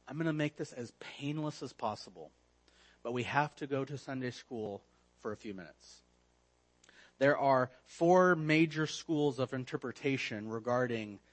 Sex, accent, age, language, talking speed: male, American, 30-49, English, 155 wpm